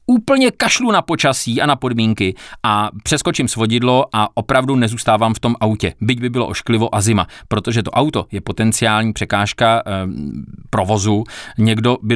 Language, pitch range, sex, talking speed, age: Czech, 105-130 Hz, male, 160 wpm, 30-49